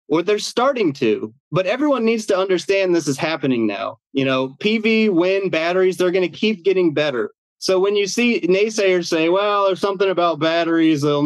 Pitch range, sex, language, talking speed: 140-190 Hz, male, English, 185 wpm